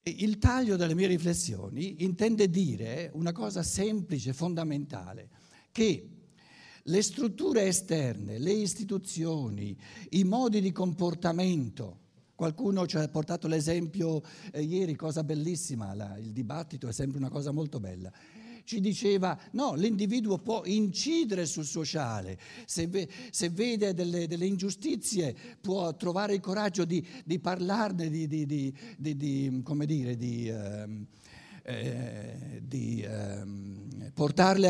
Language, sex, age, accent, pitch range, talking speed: Italian, male, 60-79, native, 145-195 Hz, 105 wpm